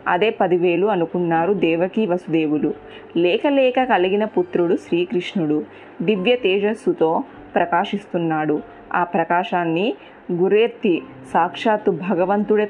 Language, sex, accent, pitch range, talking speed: Telugu, female, native, 175-215 Hz, 85 wpm